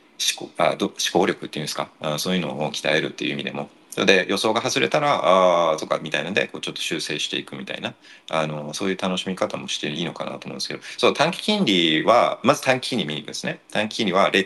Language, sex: Japanese, male